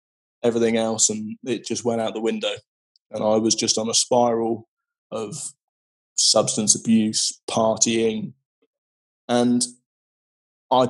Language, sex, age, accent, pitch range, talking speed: English, male, 20-39, British, 115-145 Hz, 120 wpm